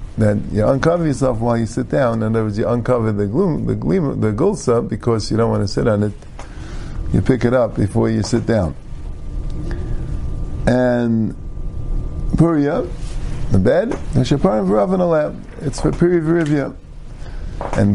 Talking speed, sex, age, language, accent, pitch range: 145 wpm, male, 50-69, English, American, 110-150 Hz